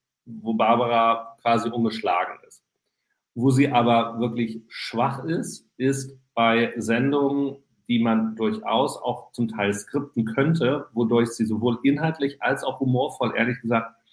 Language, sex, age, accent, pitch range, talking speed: German, male, 40-59, German, 115-140 Hz, 130 wpm